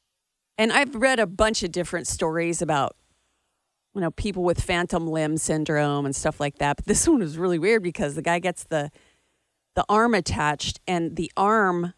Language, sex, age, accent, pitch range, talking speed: English, female, 40-59, American, 155-210 Hz, 185 wpm